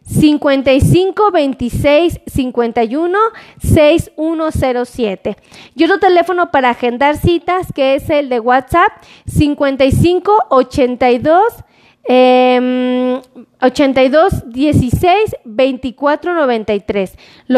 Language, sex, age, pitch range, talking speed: Spanish, female, 30-49, 260-345 Hz, 55 wpm